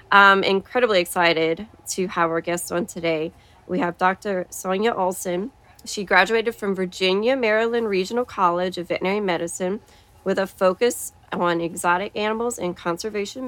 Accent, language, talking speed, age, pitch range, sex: American, English, 145 wpm, 30-49, 180-215 Hz, female